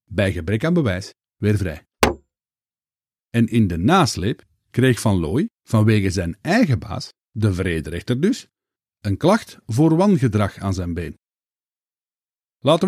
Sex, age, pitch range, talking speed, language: male, 50-69, 100-145 Hz, 130 wpm, Dutch